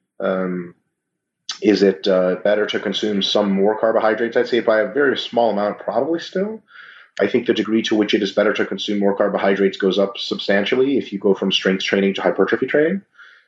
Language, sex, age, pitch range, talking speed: English, male, 30-49, 95-110 Hz, 200 wpm